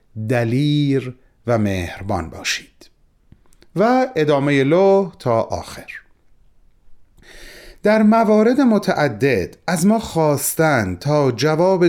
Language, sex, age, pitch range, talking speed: Persian, male, 40-59, 120-165 Hz, 85 wpm